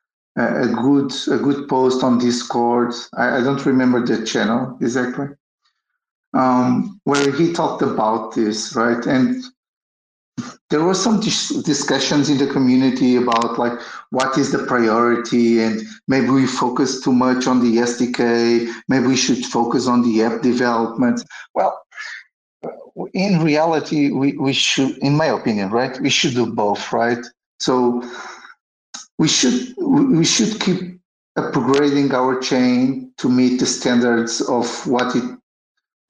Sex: male